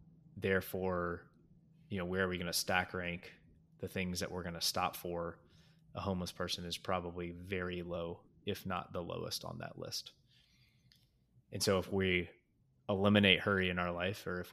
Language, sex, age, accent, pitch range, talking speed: English, male, 20-39, American, 90-105 Hz, 180 wpm